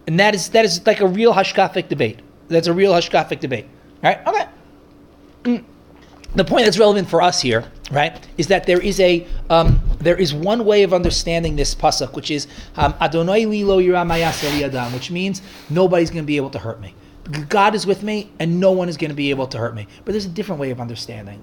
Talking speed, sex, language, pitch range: 220 wpm, male, English, 150-200 Hz